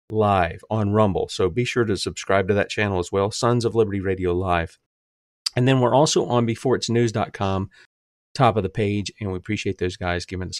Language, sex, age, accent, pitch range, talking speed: English, male, 40-59, American, 95-120 Hz, 200 wpm